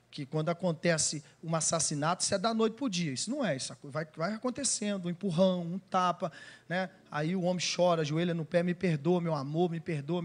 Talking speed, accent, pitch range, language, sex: 215 wpm, Brazilian, 175-235 Hz, Portuguese, male